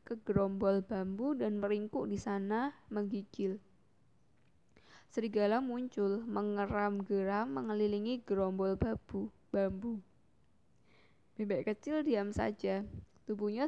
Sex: female